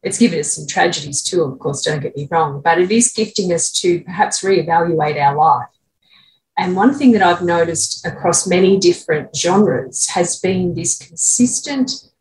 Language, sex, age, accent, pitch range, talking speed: English, female, 30-49, Australian, 160-230 Hz, 175 wpm